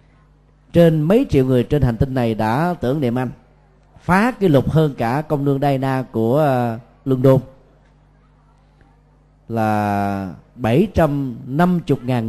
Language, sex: Vietnamese, male